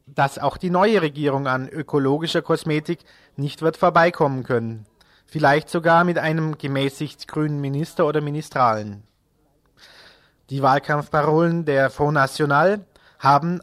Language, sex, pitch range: German, male, 135-170 Hz